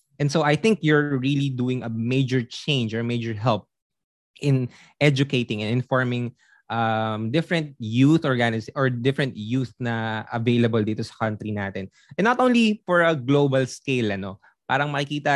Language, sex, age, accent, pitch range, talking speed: Filipino, male, 20-39, native, 115-160 Hz, 160 wpm